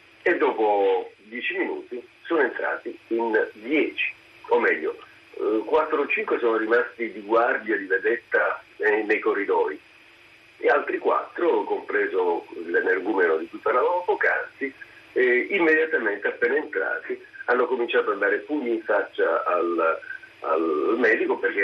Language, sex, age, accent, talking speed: Italian, male, 50-69, native, 130 wpm